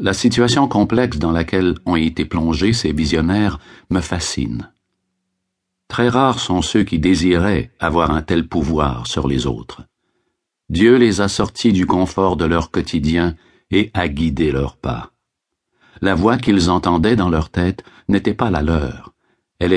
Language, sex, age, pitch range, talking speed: French, male, 60-79, 80-105 Hz, 155 wpm